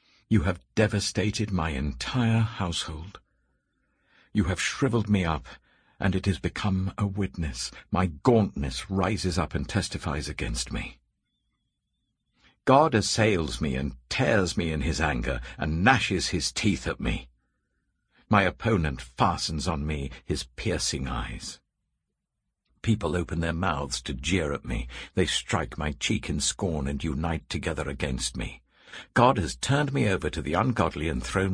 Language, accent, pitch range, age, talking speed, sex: English, British, 70-110 Hz, 60-79, 145 wpm, male